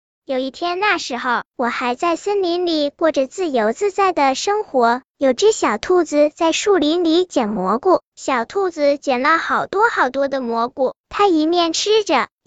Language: Chinese